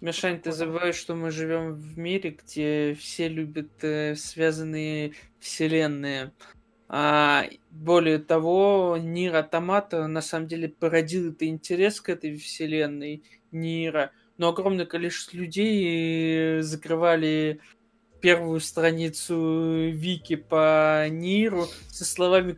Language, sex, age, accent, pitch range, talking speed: Russian, male, 20-39, native, 155-170 Hz, 105 wpm